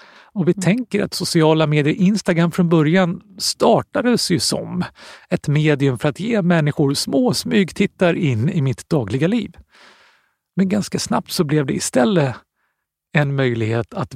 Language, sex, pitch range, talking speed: Swedish, male, 125-175 Hz, 150 wpm